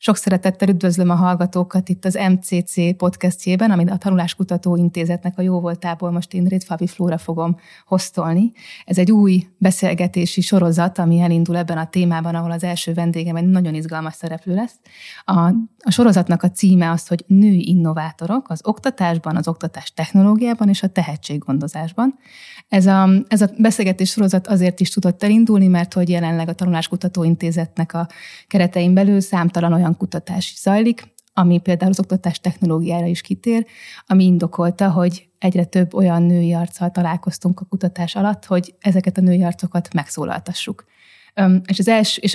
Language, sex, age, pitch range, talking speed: Hungarian, female, 20-39, 175-195 Hz, 155 wpm